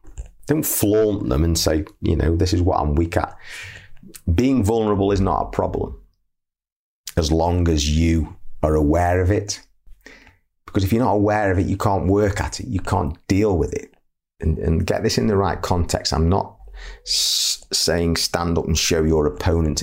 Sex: male